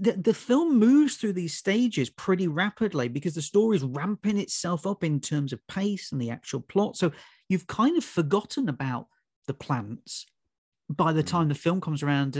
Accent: British